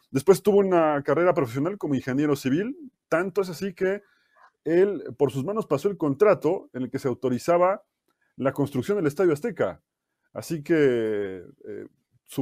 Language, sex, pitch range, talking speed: Spanish, male, 125-165 Hz, 155 wpm